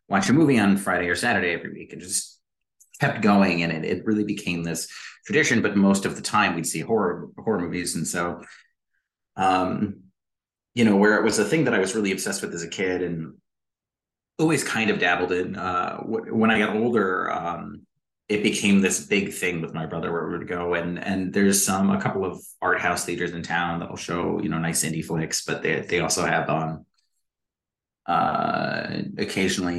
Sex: male